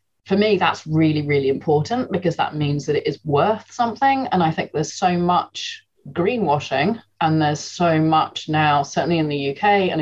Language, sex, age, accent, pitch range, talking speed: English, female, 30-49, British, 145-190 Hz, 185 wpm